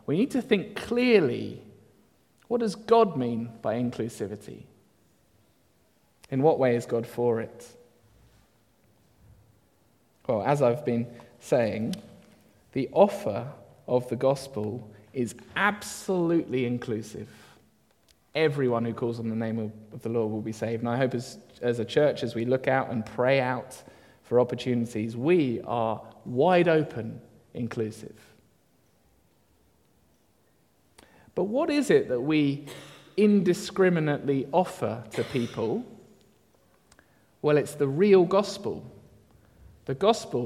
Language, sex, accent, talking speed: English, male, British, 120 wpm